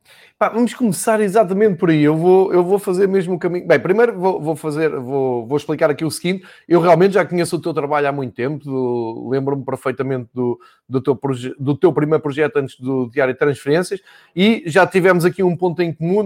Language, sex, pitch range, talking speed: Portuguese, male, 135-170 Hz, 185 wpm